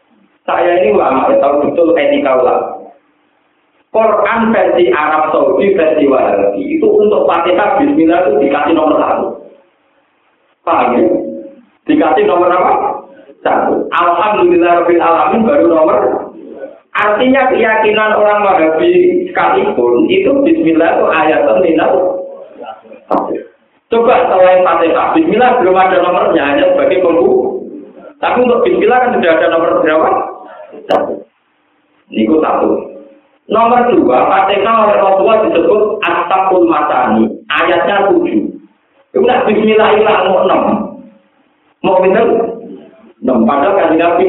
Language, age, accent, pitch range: Indonesian, 50-69, native, 175-280 Hz